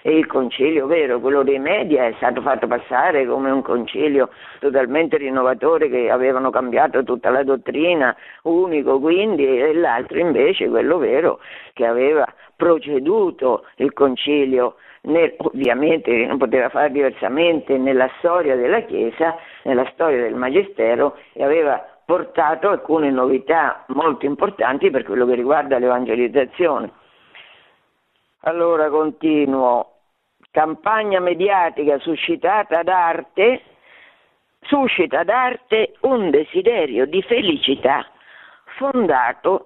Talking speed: 110 wpm